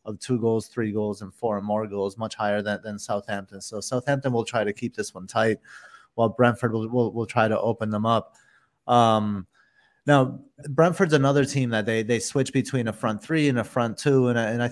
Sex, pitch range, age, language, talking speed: male, 105-125 Hz, 30-49, English, 225 wpm